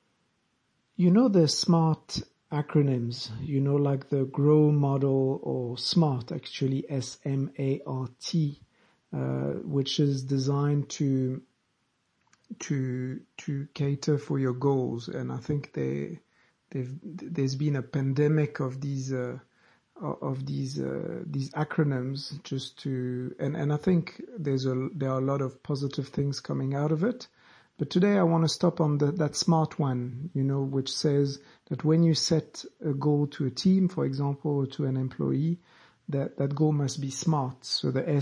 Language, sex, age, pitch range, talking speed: English, male, 60-79, 130-150 Hz, 165 wpm